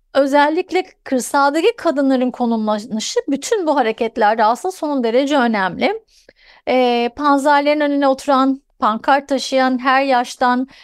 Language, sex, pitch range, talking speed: Turkish, female, 230-280 Hz, 105 wpm